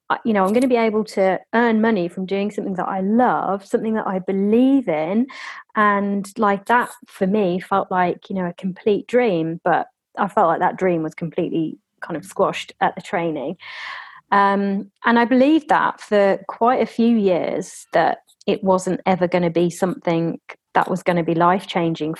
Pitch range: 185-240 Hz